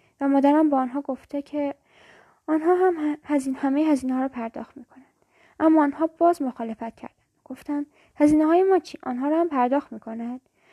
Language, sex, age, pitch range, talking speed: Persian, female, 10-29, 260-310 Hz, 180 wpm